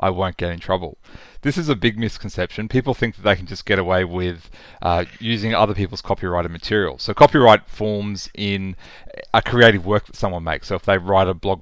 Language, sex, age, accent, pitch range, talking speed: English, male, 30-49, Australian, 90-110 Hz, 210 wpm